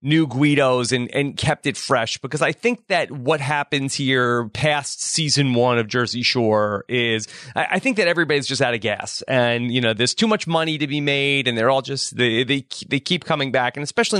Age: 30-49